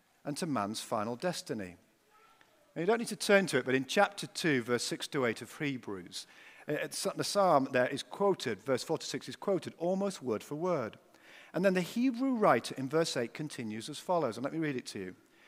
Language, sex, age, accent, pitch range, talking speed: English, male, 50-69, British, 135-200 Hz, 215 wpm